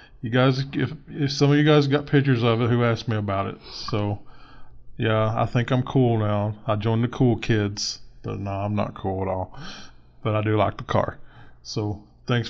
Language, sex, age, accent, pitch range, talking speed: English, male, 20-39, American, 110-135 Hz, 210 wpm